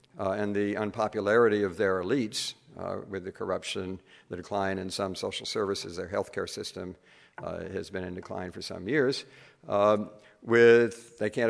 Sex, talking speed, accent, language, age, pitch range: male, 170 wpm, American, English, 50-69, 95-110 Hz